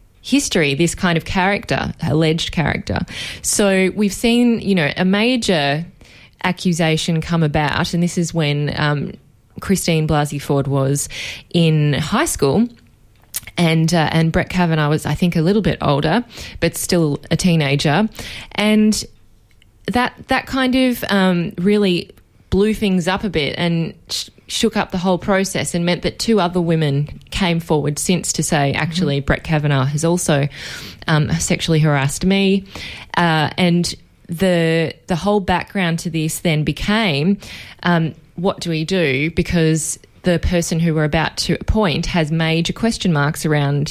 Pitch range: 150-185 Hz